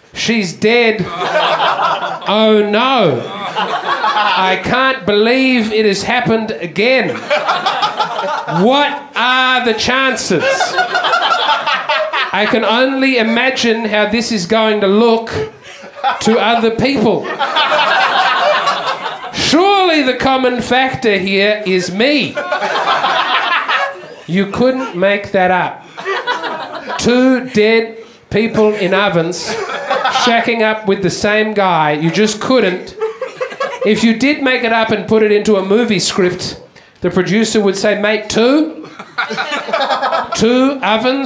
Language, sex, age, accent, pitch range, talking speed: English, male, 30-49, Australian, 215-270 Hz, 110 wpm